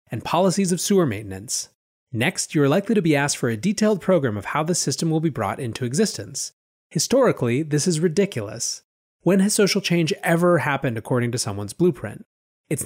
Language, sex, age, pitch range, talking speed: English, male, 30-49, 120-180 Hz, 185 wpm